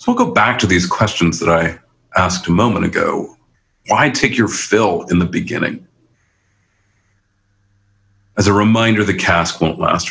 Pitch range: 100-115 Hz